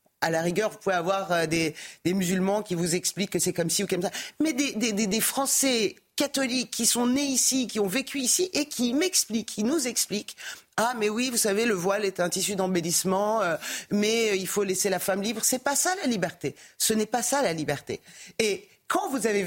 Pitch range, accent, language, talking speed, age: 180-235 Hz, French, French, 230 wpm, 40-59